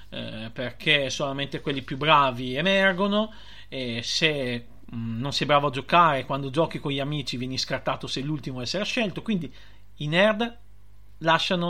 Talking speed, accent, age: 160 wpm, native, 40-59